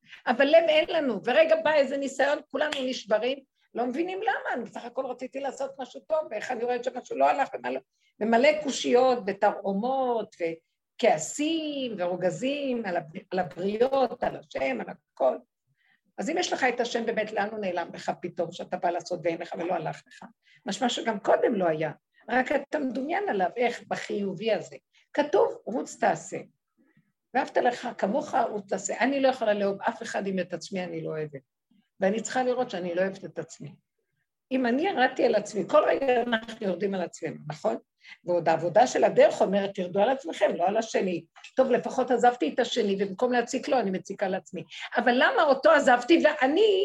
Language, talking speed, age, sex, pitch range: Hebrew, 175 wpm, 50-69, female, 195-270 Hz